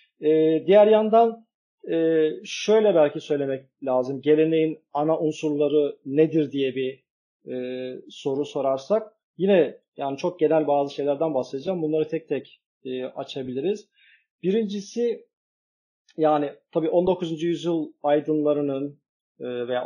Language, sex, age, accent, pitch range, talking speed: Turkish, male, 40-59, native, 145-190 Hz, 95 wpm